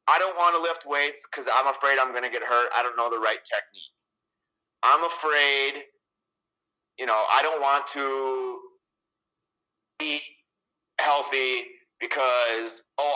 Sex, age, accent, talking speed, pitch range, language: male, 30-49, American, 150 wpm, 115-165 Hz, English